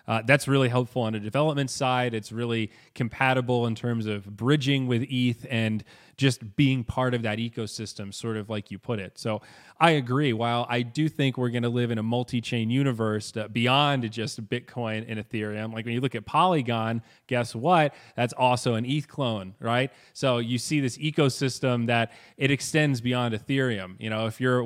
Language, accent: English, American